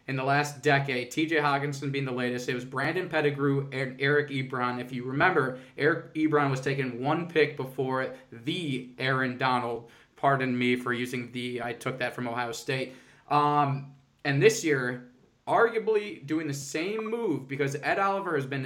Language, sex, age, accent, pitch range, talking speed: English, male, 20-39, American, 130-150 Hz, 175 wpm